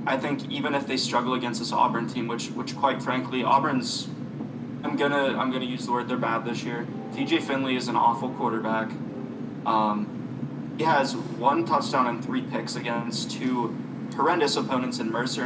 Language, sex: English, male